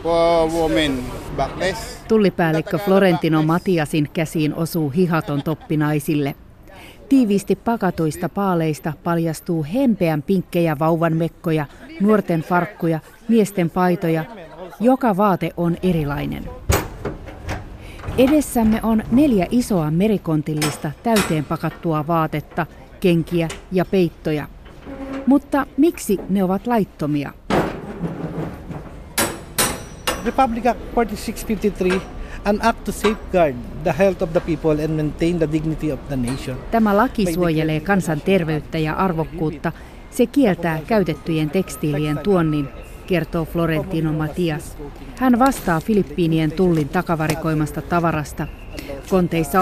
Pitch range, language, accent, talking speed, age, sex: 155-195 Hz, Finnish, native, 70 wpm, 30-49, female